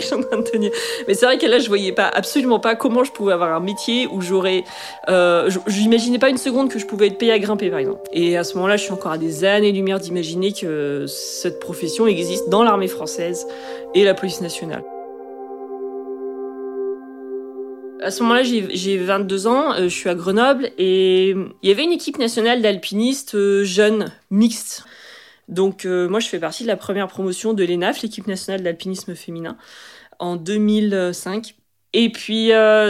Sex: female